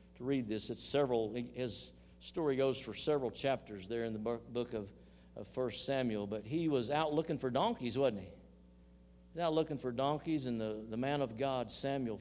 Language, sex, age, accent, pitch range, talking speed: English, male, 50-69, American, 115-150 Hz, 195 wpm